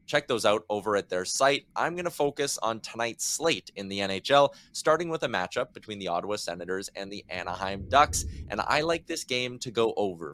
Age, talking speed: 20-39, 215 wpm